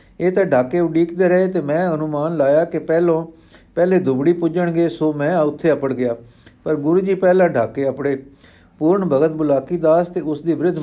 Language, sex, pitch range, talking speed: Punjabi, male, 135-170 Hz, 185 wpm